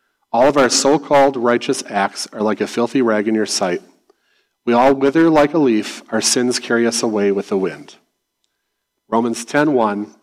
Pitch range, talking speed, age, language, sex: 110-135 Hz, 175 wpm, 40-59, English, male